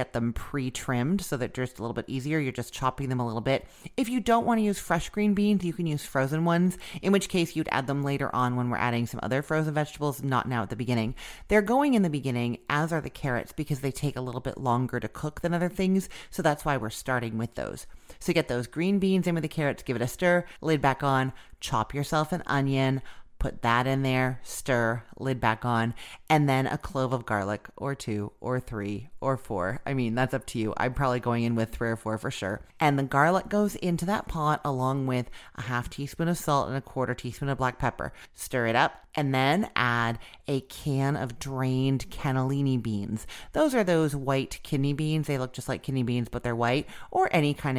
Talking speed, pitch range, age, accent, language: 235 wpm, 125-165 Hz, 30-49, American, English